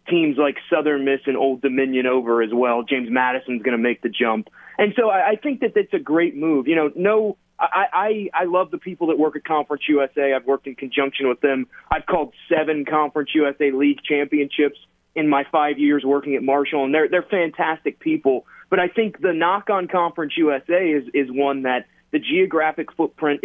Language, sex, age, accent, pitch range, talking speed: English, male, 30-49, American, 140-175 Hz, 205 wpm